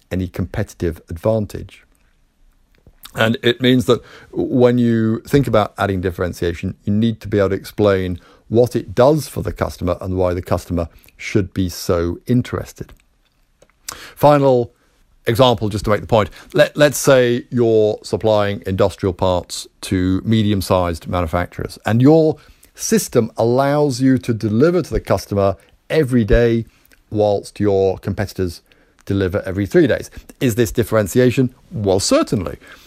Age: 50-69